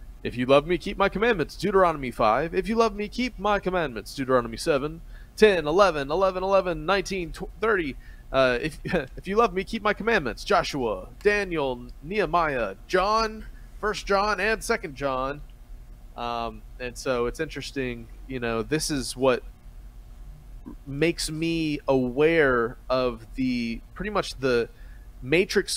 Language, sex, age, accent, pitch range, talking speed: English, male, 30-49, American, 125-165 Hz, 140 wpm